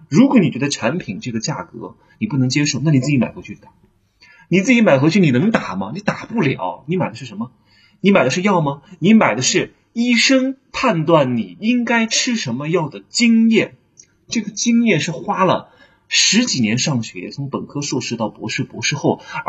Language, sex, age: Chinese, male, 30-49